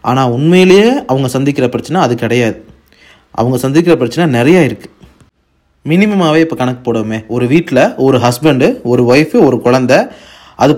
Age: 30-49